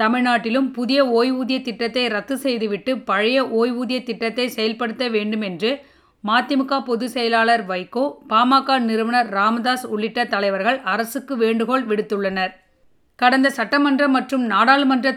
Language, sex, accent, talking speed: Tamil, female, native, 105 wpm